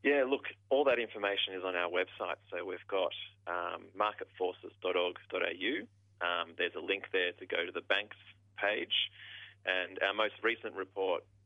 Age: 30-49